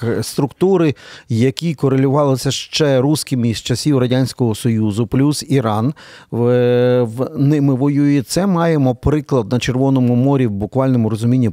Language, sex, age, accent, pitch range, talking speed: Ukrainian, male, 50-69, native, 115-140 Hz, 125 wpm